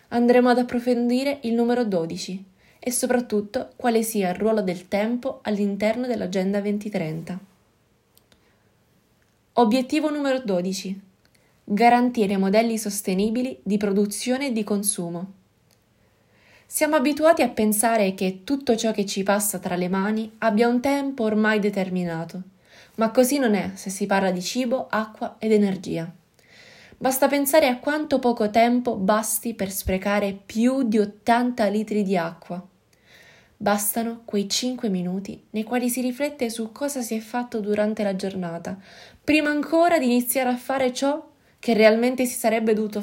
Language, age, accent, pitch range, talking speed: Italian, 20-39, native, 195-245 Hz, 140 wpm